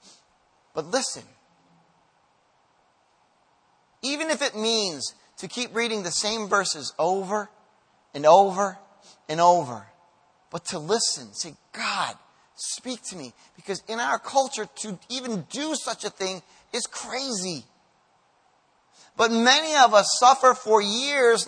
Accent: American